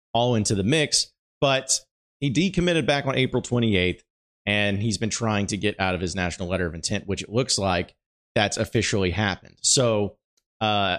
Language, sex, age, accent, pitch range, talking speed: English, male, 30-49, American, 100-125 Hz, 180 wpm